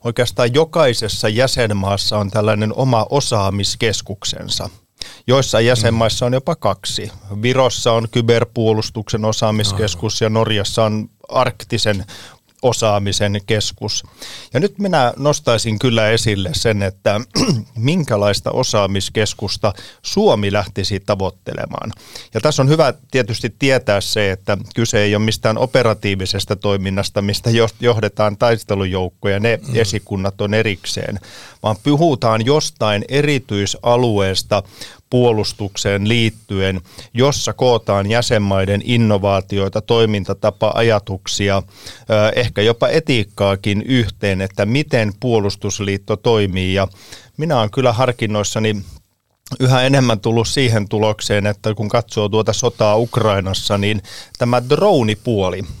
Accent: native